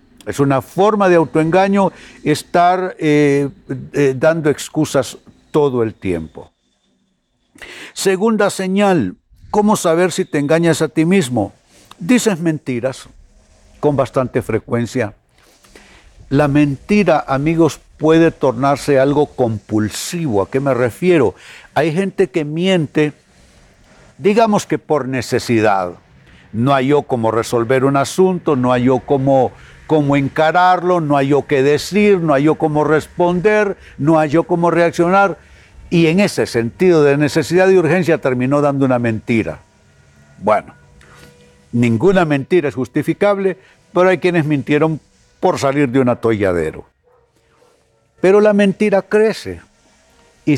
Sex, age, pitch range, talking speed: male, 60-79, 130-180 Hz, 125 wpm